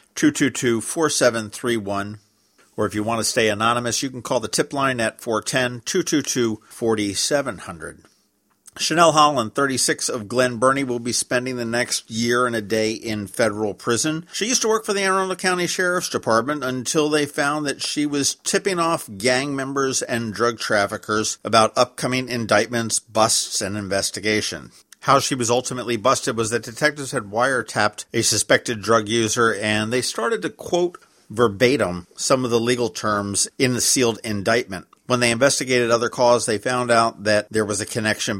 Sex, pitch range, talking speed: male, 105-130 Hz, 165 wpm